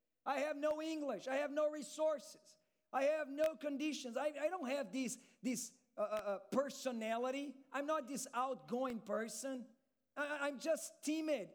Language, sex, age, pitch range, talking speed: English, male, 40-59, 185-270 Hz, 150 wpm